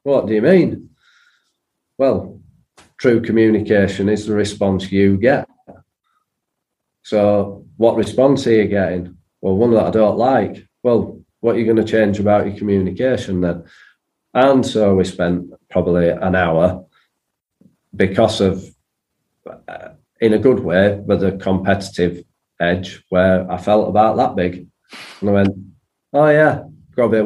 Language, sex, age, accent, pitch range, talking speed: English, male, 40-59, British, 95-110 Hz, 145 wpm